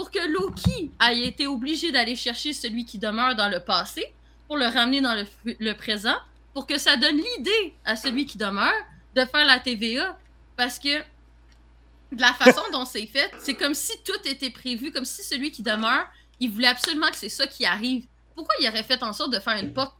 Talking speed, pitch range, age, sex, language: 215 wpm, 225-275 Hz, 30-49, female, French